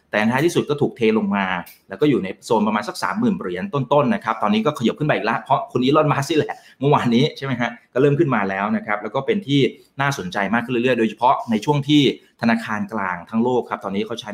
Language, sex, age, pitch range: Thai, male, 20-39, 110-150 Hz